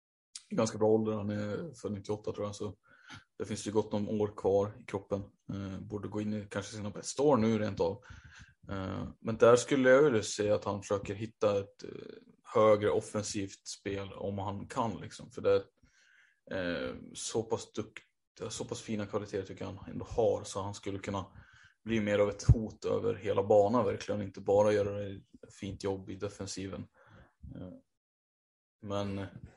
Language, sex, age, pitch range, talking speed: Swedish, male, 20-39, 100-110 Hz, 175 wpm